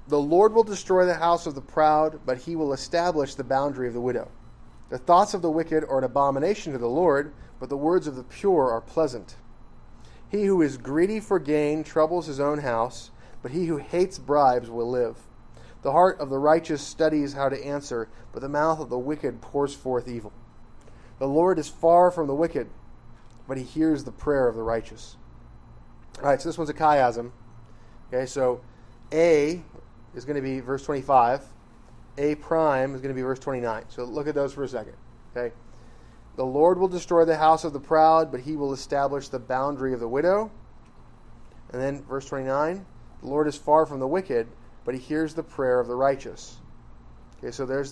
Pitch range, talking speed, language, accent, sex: 120-155 Hz, 200 wpm, English, American, male